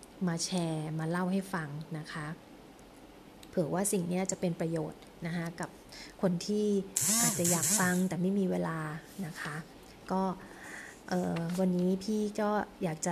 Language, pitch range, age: Thai, 170-195 Hz, 20-39